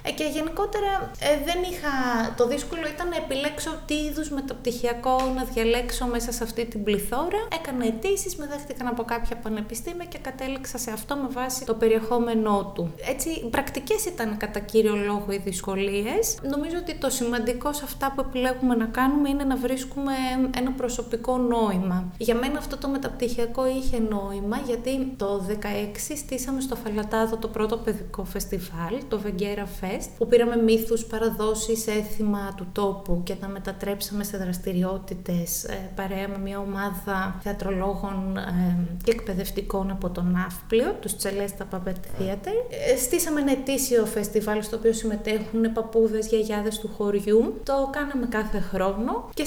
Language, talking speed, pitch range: Greek, 145 wpm, 200-265 Hz